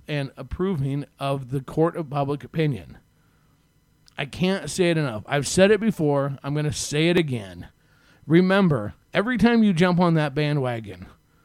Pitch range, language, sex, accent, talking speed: 135-170 Hz, English, male, American, 155 wpm